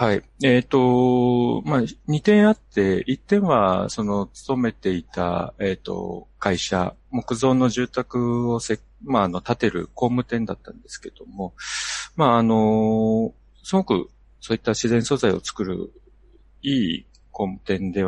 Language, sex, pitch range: Japanese, male, 95-125 Hz